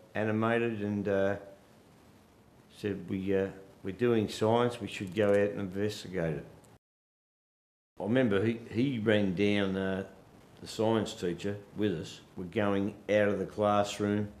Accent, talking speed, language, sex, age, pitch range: Australian, 145 wpm, English, male, 50-69, 95-110 Hz